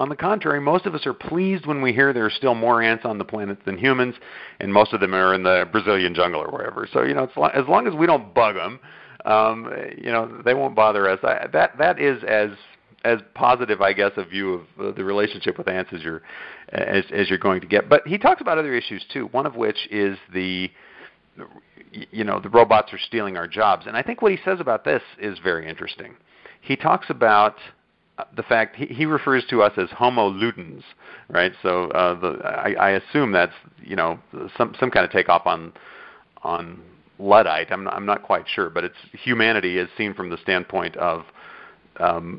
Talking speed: 215 wpm